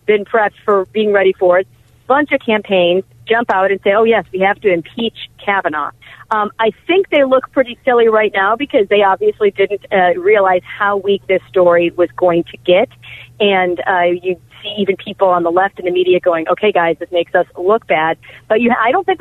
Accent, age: American, 40-59